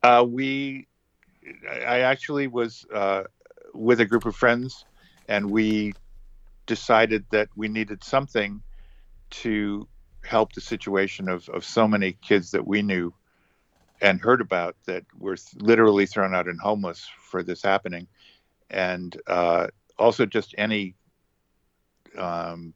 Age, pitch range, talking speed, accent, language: 50-69, 95-110 Hz, 130 wpm, American, English